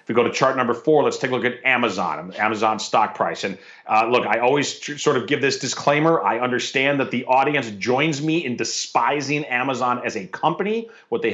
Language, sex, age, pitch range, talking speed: English, male, 30-49, 115-135 Hz, 215 wpm